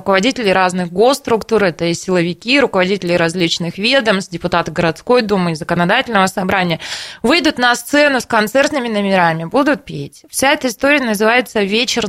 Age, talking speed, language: 20-39, 140 wpm, Russian